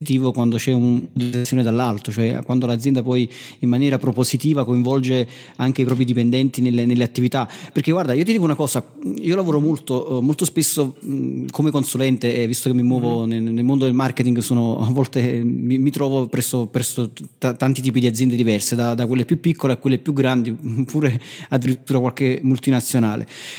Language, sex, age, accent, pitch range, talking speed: Italian, male, 30-49, native, 125-155 Hz, 180 wpm